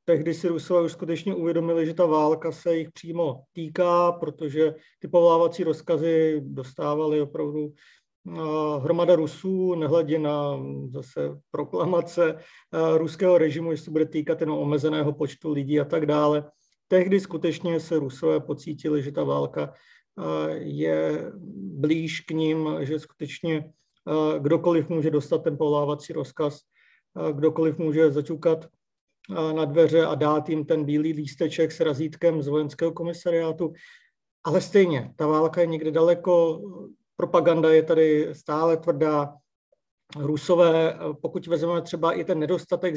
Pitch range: 155-170 Hz